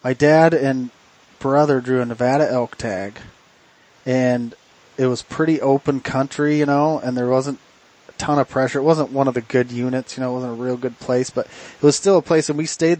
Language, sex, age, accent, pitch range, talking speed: English, male, 30-49, American, 125-145 Hz, 220 wpm